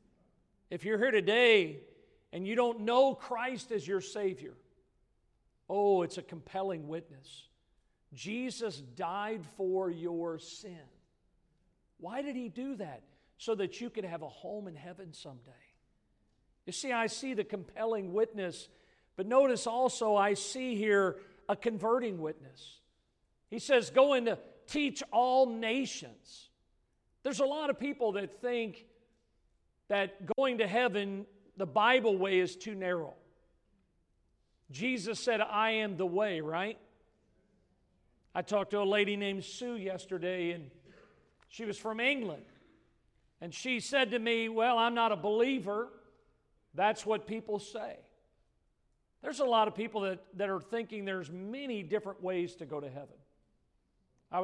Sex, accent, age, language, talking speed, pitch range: male, American, 50-69, English, 145 wpm, 185-235 Hz